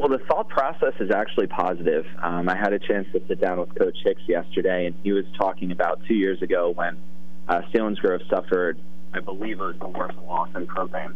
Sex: male